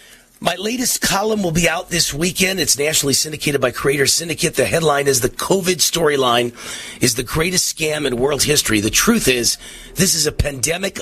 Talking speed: 185 wpm